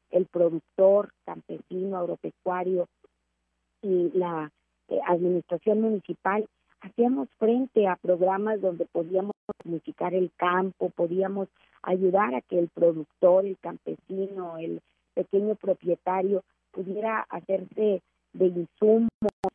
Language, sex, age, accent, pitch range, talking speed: Spanish, female, 50-69, Mexican, 170-200 Hz, 105 wpm